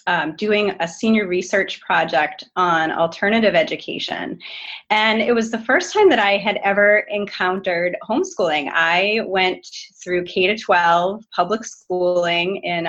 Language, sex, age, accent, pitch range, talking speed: English, female, 30-49, American, 180-230 Hz, 140 wpm